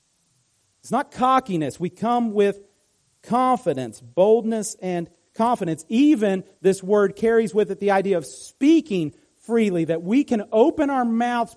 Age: 40-59